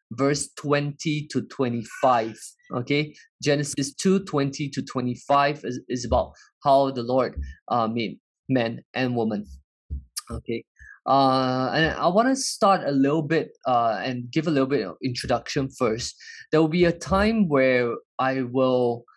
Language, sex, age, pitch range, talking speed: English, male, 20-39, 125-155 Hz, 150 wpm